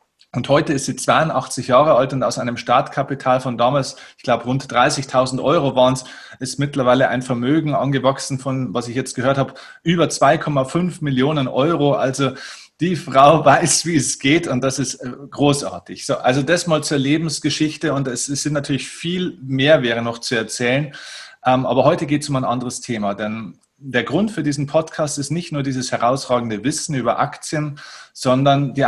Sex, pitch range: male, 120-145 Hz